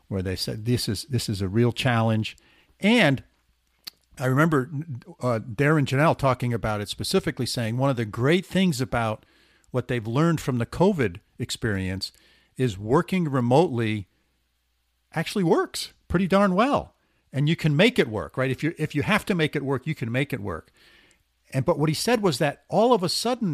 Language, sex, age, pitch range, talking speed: English, male, 50-69, 115-165 Hz, 190 wpm